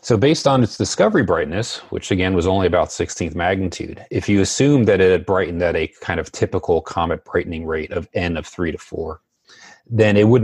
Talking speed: 215 wpm